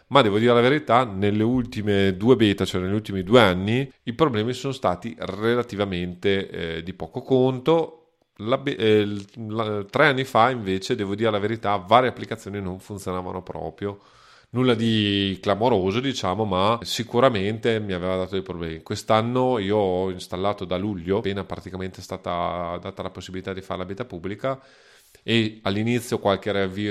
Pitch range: 95-110 Hz